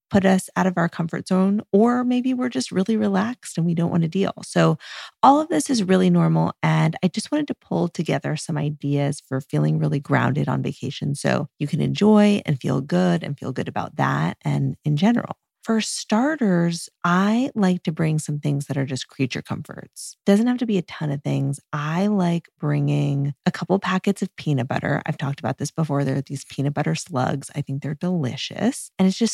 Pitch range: 145-195 Hz